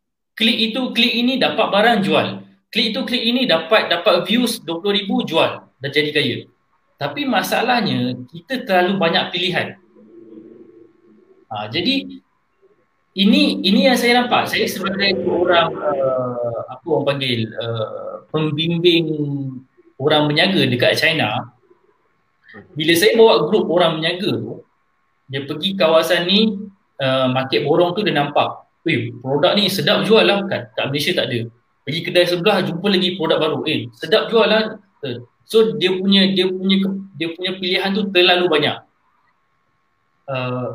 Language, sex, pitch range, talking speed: Malay, male, 145-215 Hz, 140 wpm